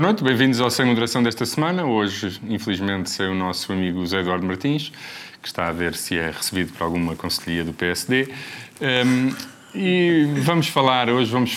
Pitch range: 90-115 Hz